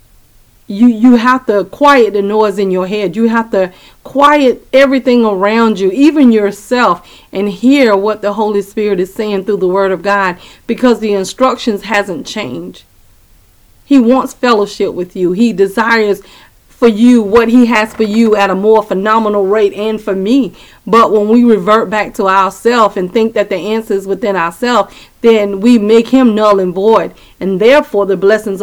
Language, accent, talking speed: English, American, 180 wpm